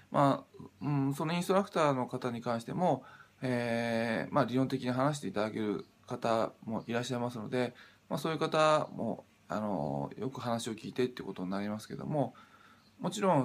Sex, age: male, 20-39